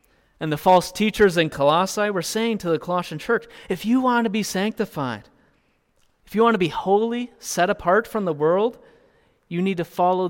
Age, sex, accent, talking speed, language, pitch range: 30-49, male, American, 190 wpm, English, 150-190 Hz